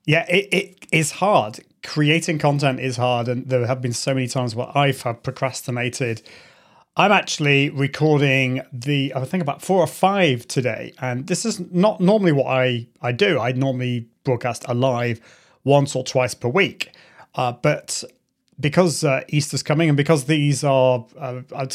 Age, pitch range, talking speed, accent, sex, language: 30-49, 130-170 Hz, 170 wpm, British, male, English